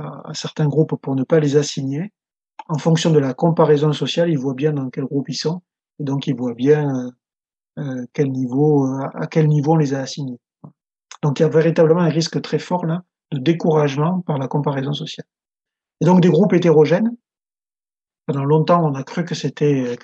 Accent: French